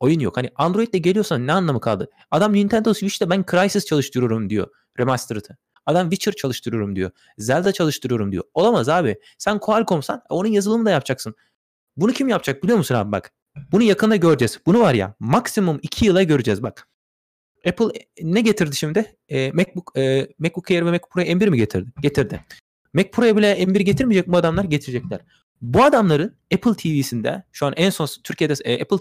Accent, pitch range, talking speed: native, 145-200 Hz, 175 wpm